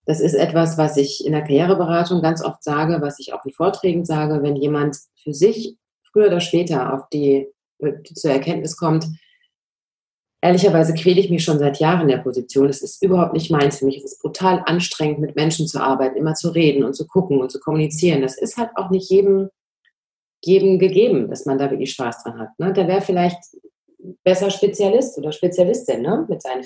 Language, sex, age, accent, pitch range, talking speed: German, female, 30-49, German, 150-190 Hz, 200 wpm